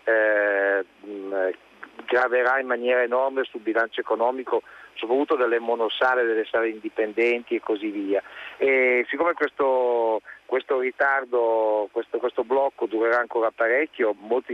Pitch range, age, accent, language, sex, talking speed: 110-130 Hz, 50-69, native, Italian, male, 120 wpm